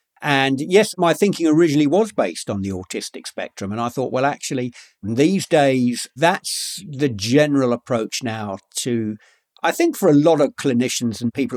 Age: 50-69